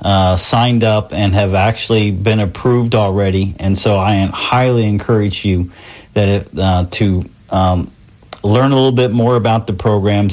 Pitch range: 95-110 Hz